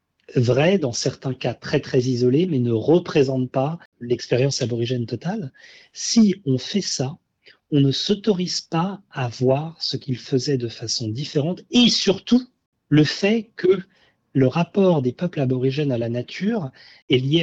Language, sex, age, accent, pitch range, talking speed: French, male, 40-59, French, 135-185 Hz, 155 wpm